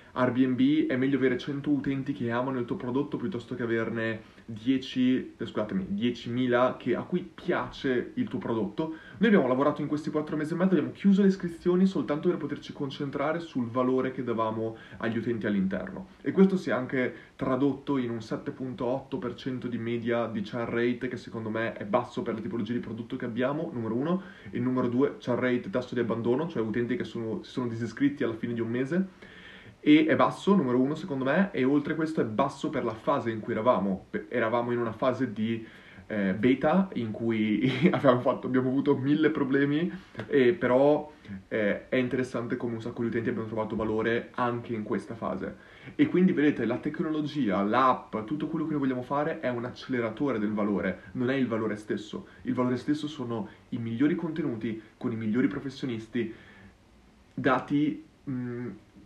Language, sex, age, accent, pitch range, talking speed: Italian, male, 20-39, native, 115-145 Hz, 180 wpm